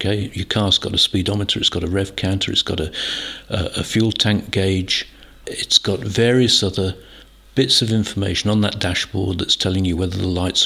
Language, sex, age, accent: English, male, 50-69, British